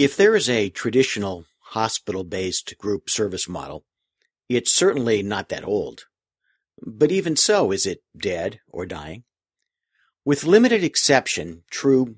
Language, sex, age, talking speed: English, male, 50-69, 130 wpm